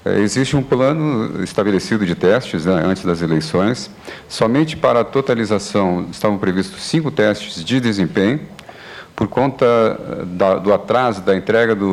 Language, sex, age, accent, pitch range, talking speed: Portuguese, male, 50-69, Brazilian, 95-115 Hz, 130 wpm